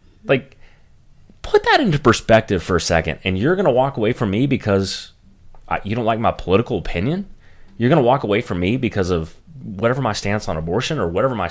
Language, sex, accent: English, male, American